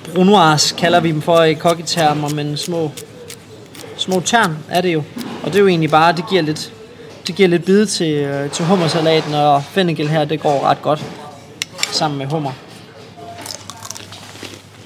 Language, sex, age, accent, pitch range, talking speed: Danish, male, 20-39, native, 135-165 Hz, 160 wpm